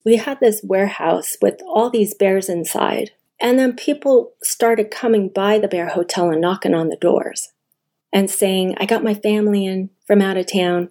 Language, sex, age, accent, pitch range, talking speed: English, female, 40-59, American, 175-215 Hz, 185 wpm